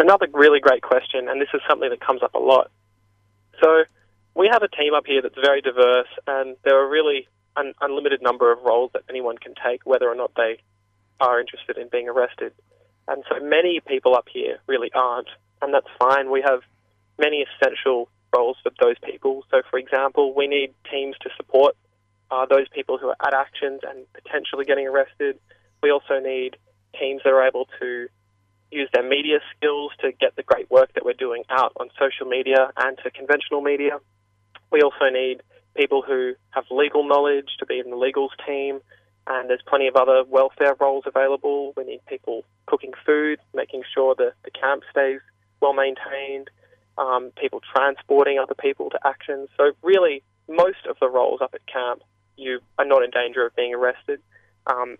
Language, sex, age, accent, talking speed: English, male, 20-39, Australian, 185 wpm